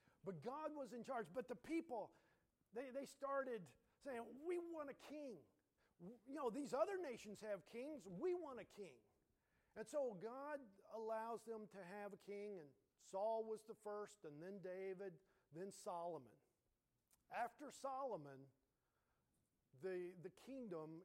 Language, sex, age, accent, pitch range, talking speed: English, male, 50-69, American, 175-250 Hz, 145 wpm